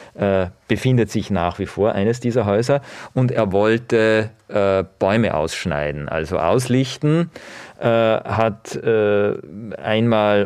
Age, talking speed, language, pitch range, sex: 40-59, 120 wpm, German, 100-120 Hz, male